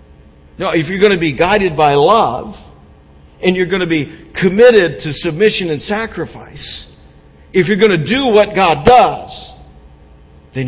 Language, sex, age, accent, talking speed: English, male, 60-79, American, 155 wpm